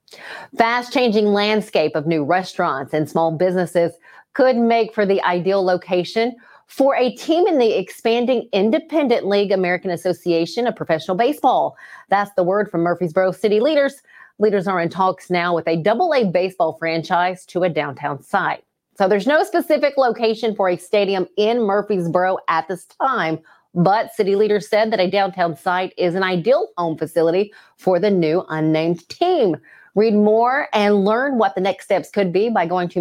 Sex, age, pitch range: female, 30-49, 175-225 Hz